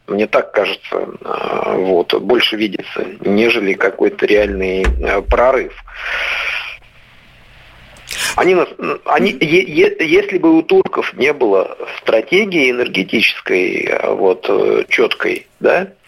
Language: Russian